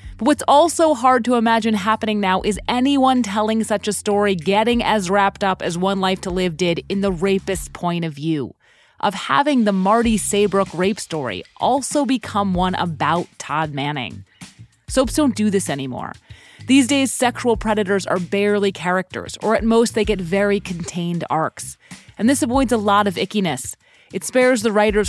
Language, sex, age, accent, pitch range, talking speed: English, female, 30-49, American, 175-225 Hz, 175 wpm